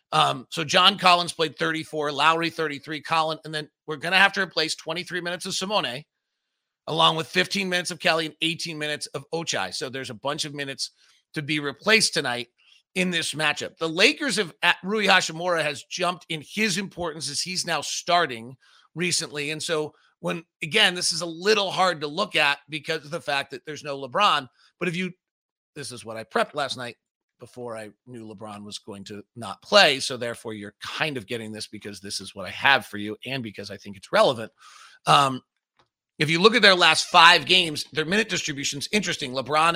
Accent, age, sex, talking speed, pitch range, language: American, 40-59, male, 200 wpm, 140-180 Hz, English